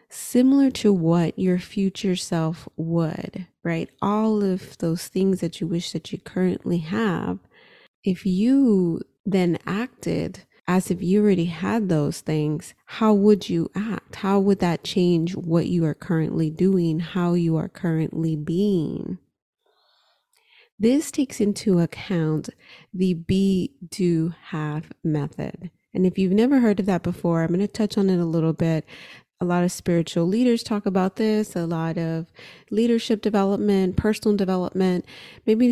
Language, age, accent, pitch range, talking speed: English, 30-49, American, 165-210 Hz, 150 wpm